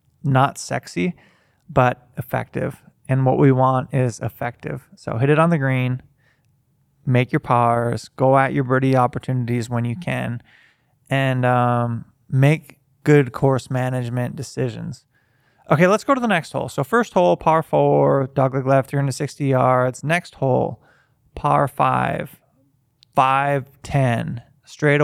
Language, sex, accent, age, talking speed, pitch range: English, male, American, 20-39, 135 wpm, 125-145 Hz